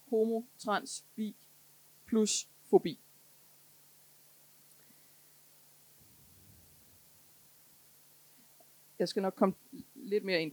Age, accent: 30-49, native